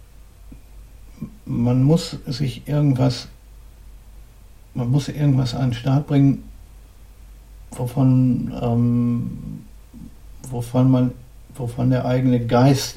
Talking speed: 90 wpm